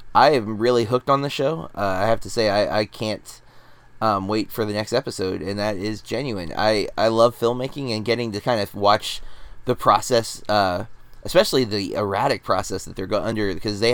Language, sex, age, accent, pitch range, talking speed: English, male, 20-39, American, 105-125 Hz, 200 wpm